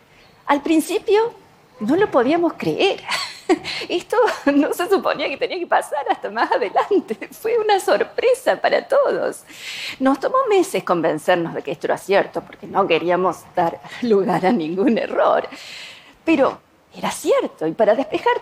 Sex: female